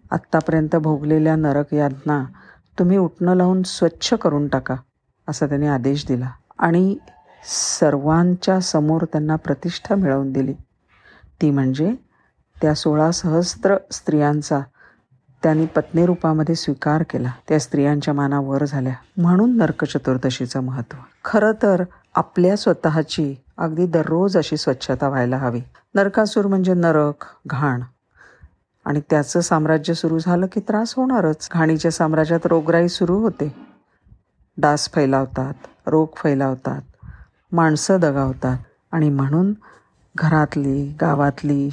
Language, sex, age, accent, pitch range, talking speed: Marathi, female, 50-69, native, 140-175 Hz, 110 wpm